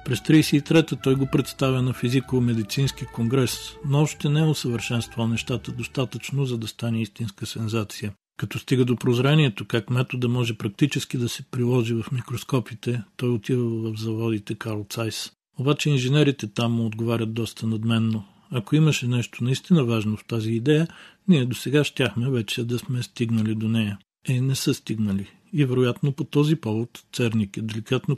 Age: 50-69